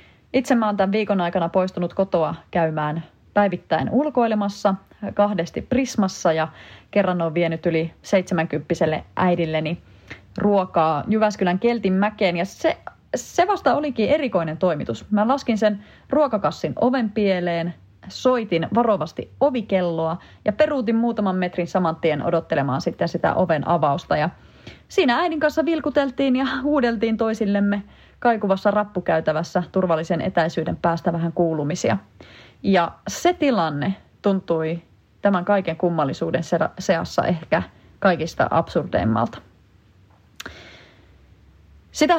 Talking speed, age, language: 110 wpm, 30-49, Finnish